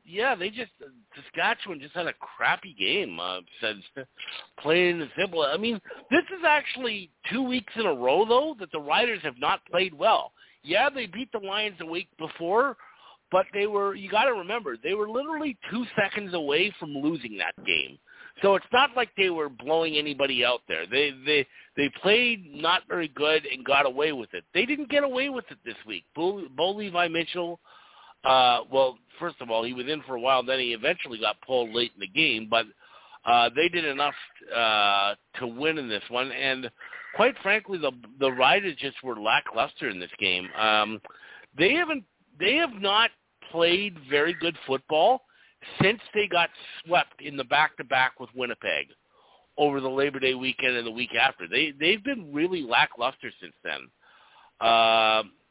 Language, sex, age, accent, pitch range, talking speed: English, male, 50-69, American, 130-210 Hz, 185 wpm